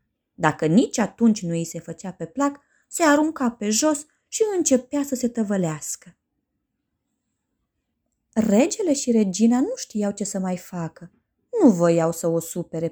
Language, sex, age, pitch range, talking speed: Romanian, female, 20-39, 180-250 Hz, 150 wpm